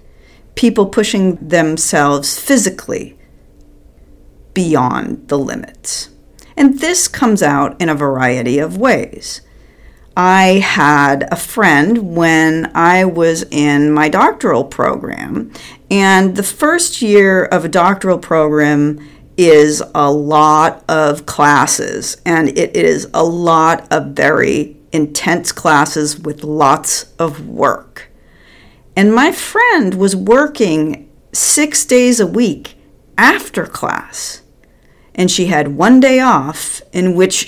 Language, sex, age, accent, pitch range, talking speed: English, female, 50-69, American, 145-195 Hz, 115 wpm